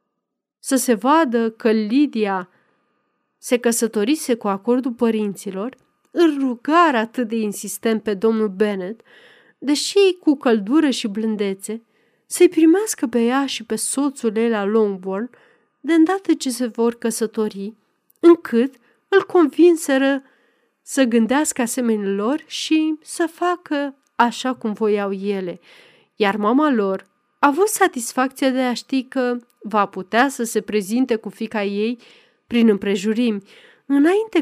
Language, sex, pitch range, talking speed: Romanian, female, 215-285 Hz, 130 wpm